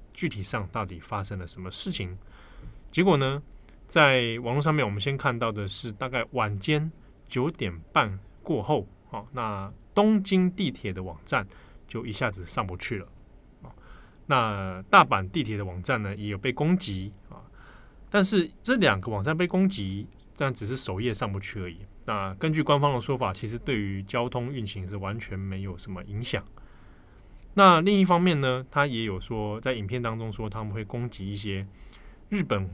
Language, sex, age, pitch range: Chinese, male, 20-39, 100-135 Hz